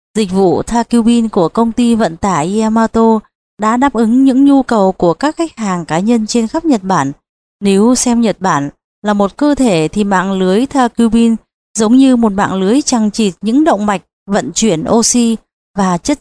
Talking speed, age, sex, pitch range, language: 195 wpm, 20-39, female, 190-240 Hz, Vietnamese